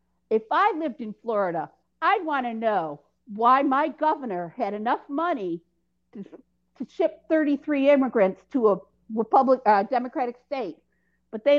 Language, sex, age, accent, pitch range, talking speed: English, female, 50-69, American, 195-275 Hz, 140 wpm